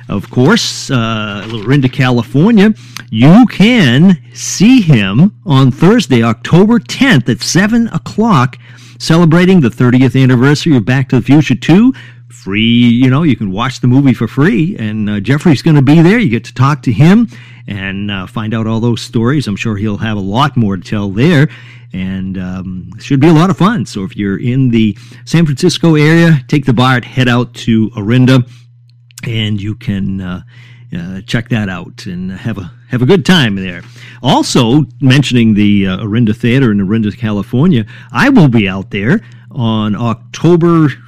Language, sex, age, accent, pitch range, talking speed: English, male, 50-69, American, 110-145 Hz, 180 wpm